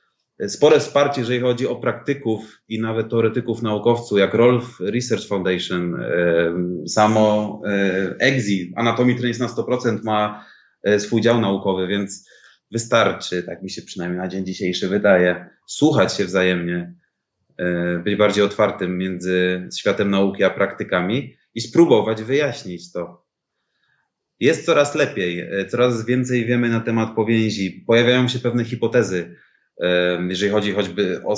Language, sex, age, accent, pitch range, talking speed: Polish, male, 30-49, native, 95-115 Hz, 130 wpm